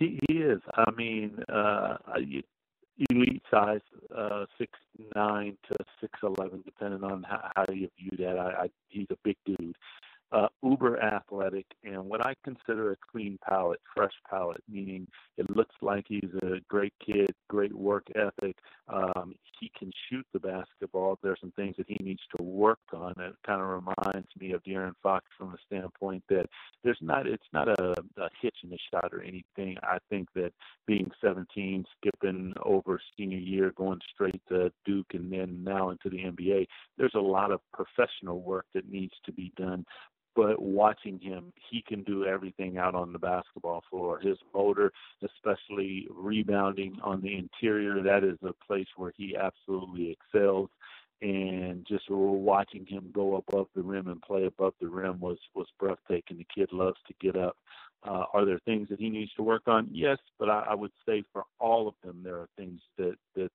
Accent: American